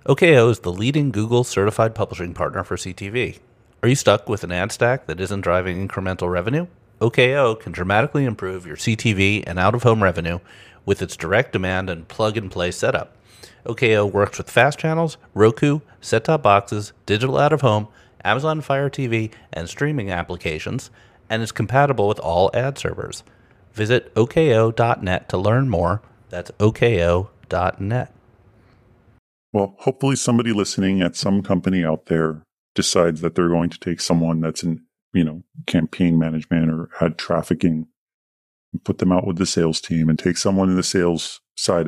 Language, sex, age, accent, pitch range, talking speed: English, male, 30-49, American, 85-115 Hz, 155 wpm